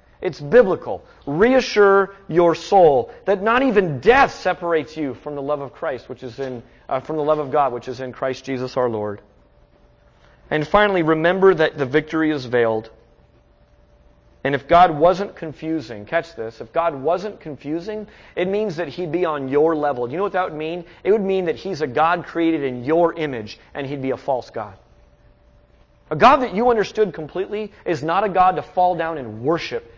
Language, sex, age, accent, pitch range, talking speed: English, male, 30-49, American, 125-170 Hz, 195 wpm